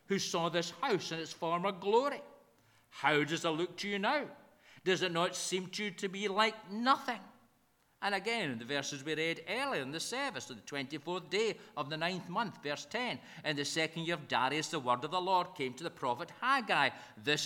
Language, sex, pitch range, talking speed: English, male, 165-210 Hz, 215 wpm